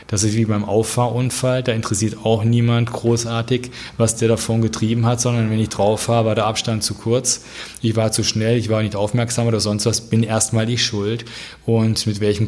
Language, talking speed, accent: German, 200 wpm, German